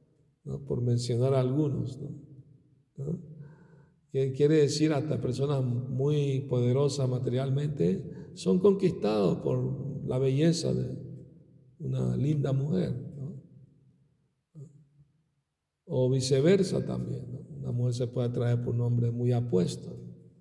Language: Spanish